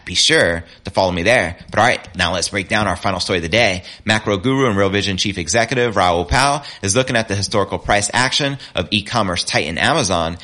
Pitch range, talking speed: 90-115 Hz, 225 wpm